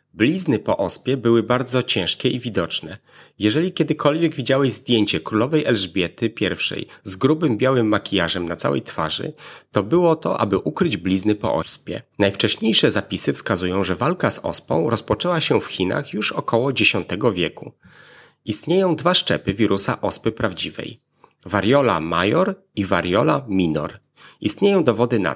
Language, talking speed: Polish, 140 wpm